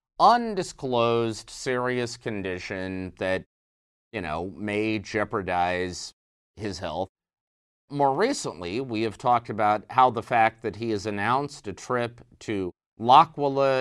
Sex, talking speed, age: male, 115 wpm, 30-49